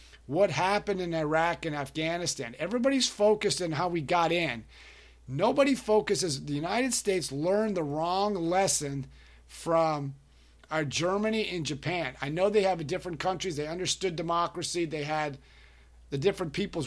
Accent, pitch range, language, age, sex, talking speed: American, 140-185 Hz, English, 50-69, male, 145 wpm